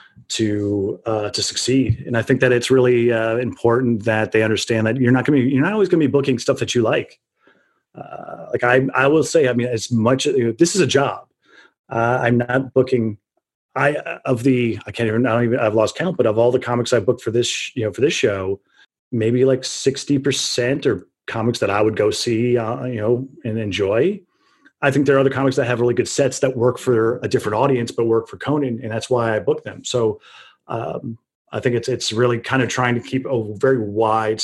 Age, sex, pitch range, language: 30-49, male, 110-130 Hz, English